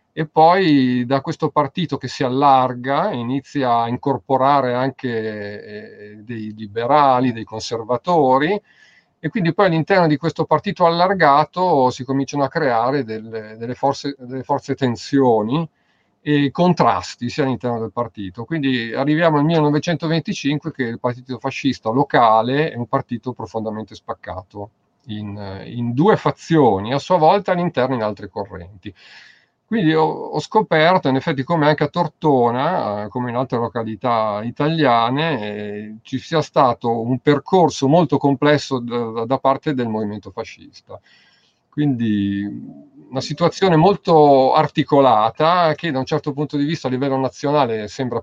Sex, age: male, 40-59